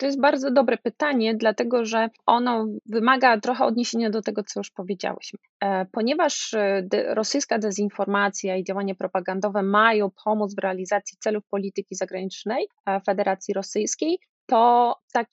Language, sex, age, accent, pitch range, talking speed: Polish, female, 20-39, native, 200-240 Hz, 130 wpm